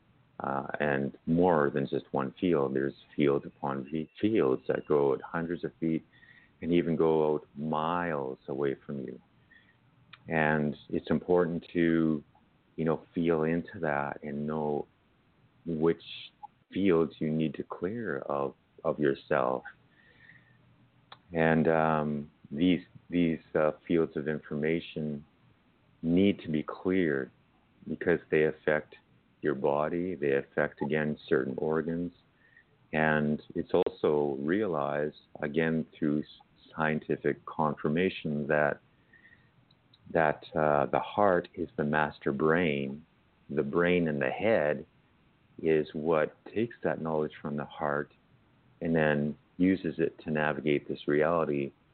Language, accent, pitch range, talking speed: English, American, 75-80 Hz, 120 wpm